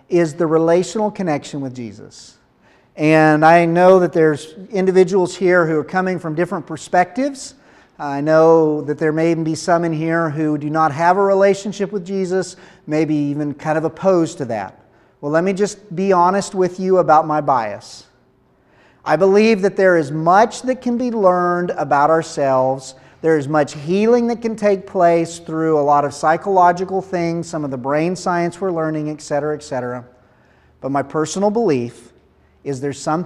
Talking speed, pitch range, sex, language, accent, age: 180 wpm, 140-185 Hz, male, English, American, 40-59